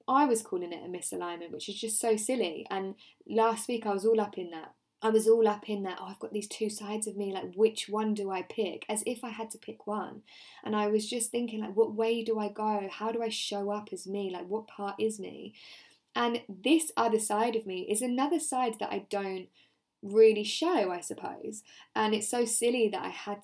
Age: 10-29